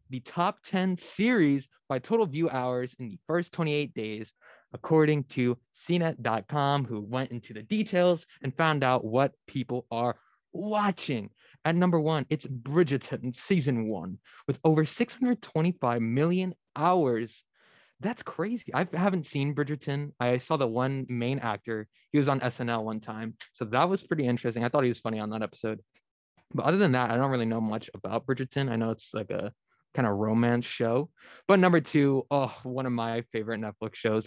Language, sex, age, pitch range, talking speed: English, male, 20-39, 115-160 Hz, 175 wpm